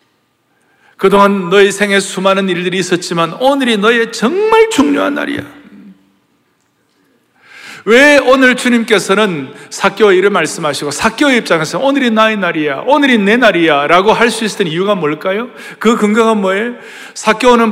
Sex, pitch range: male, 165-210 Hz